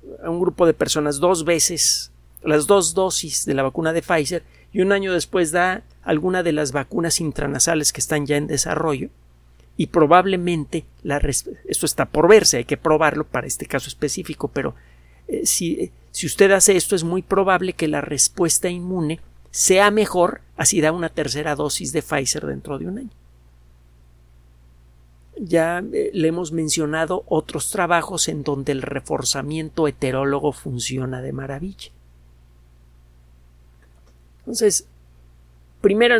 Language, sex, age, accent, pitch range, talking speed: Spanish, male, 50-69, Mexican, 120-180 Hz, 150 wpm